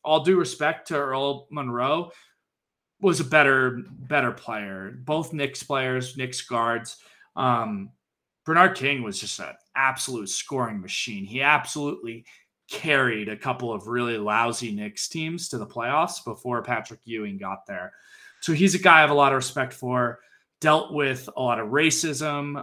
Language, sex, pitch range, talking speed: English, male, 115-155 Hz, 160 wpm